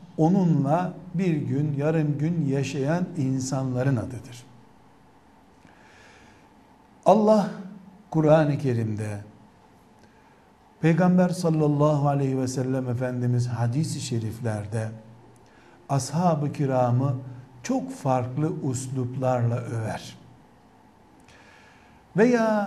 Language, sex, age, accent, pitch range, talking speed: Turkish, male, 60-79, native, 125-165 Hz, 70 wpm